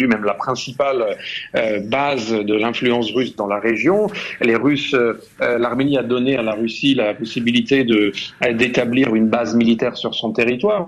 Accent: French